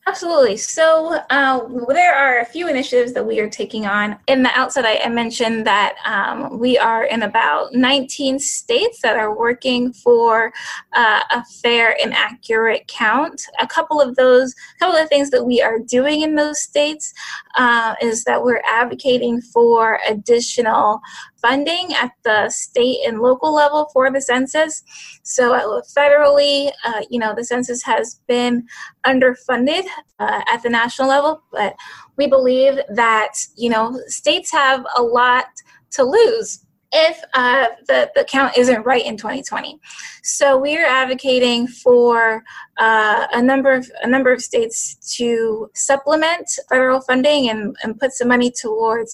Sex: female